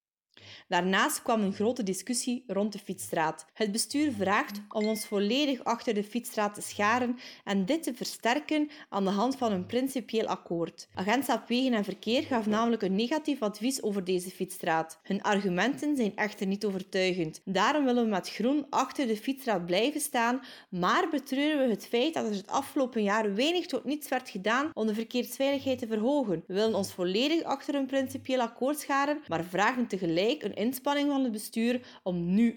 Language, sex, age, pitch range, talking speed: Dutch, female, 30-49, 185-250 Hz, 180 wpm